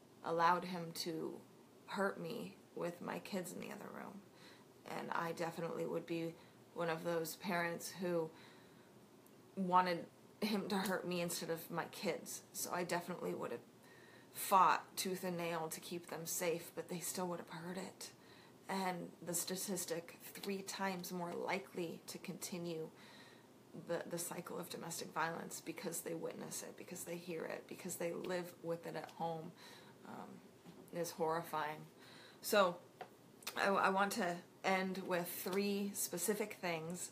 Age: 30-49